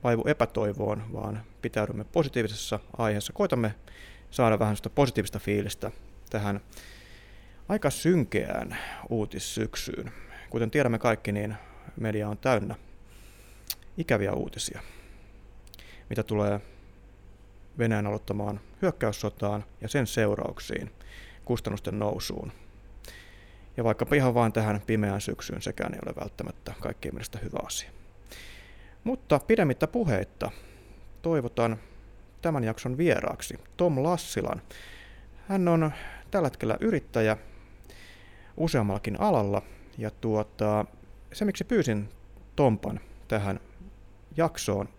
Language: Finnish